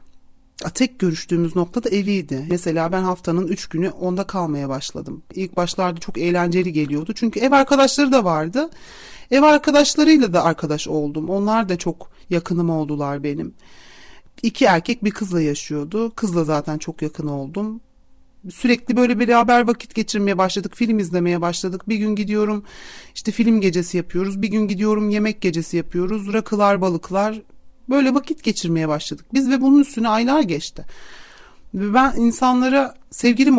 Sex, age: male, 40-59